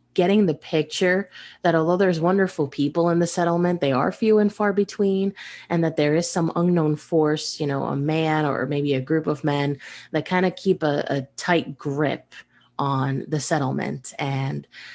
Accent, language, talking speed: American, English, 185 wpm